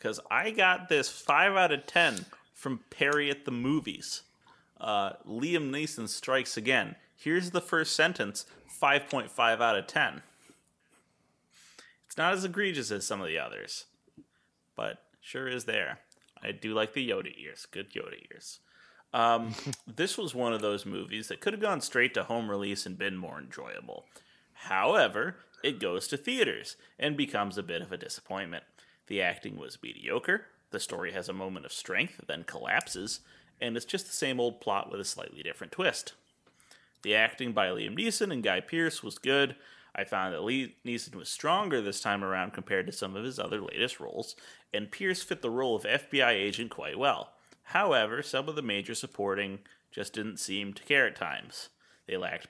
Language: English